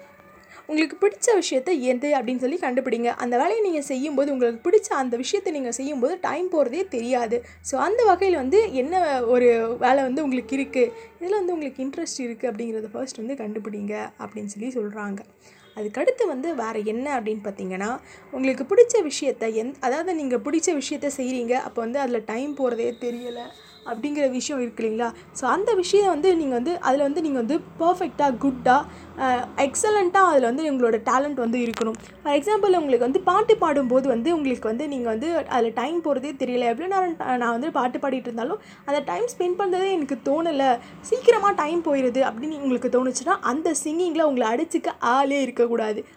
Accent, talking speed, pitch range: native, 160 wpm, 240-335 Hz